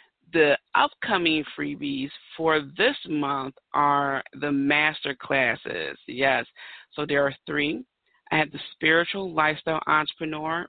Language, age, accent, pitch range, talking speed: English, 40-59, American, 145-175 Hz, 120 wpm